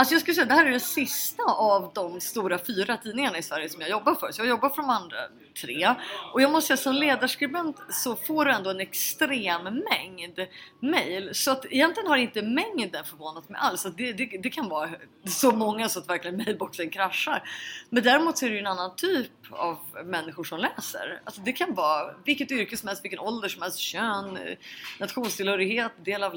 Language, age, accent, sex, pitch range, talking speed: English, 30-49, Swedish, female, 190-265 Hz, 210 wpm